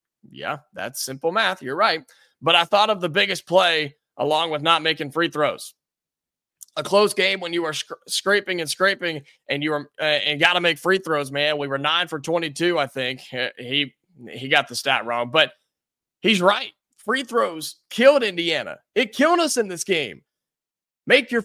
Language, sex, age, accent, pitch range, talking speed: English, male, 20-39, American, 150-200 Hz, 190 wpm